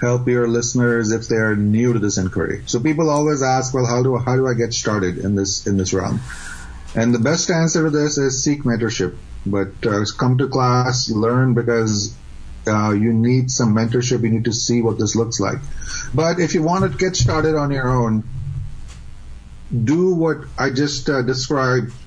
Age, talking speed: 30-49, 195 wpm